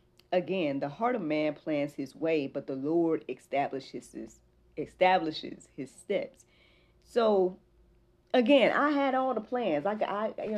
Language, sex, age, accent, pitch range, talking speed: English, female, 40-59, American, 150-200 Hz, 140 wpm